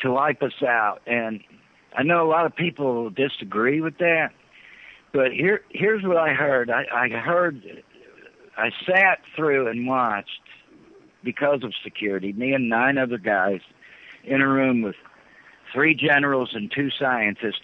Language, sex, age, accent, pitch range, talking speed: English, male, 60-79, American, 115-150 Hz, 155 wpm